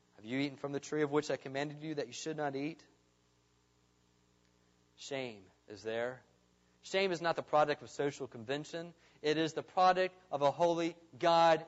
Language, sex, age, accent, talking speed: English, male, 30-49, American, 180 wpm